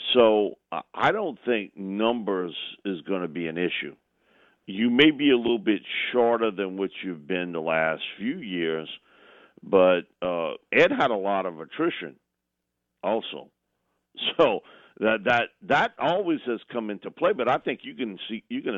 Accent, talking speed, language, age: American, 165 wpm, English, 50-69